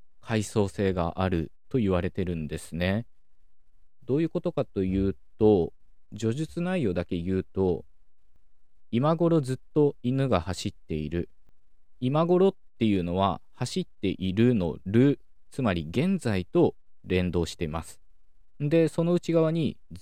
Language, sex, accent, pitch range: Japanese, male, native, 90-130 Hz